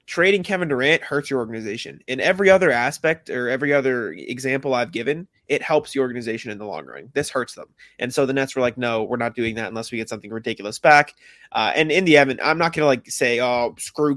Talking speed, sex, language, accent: 235 wpm, male, English, American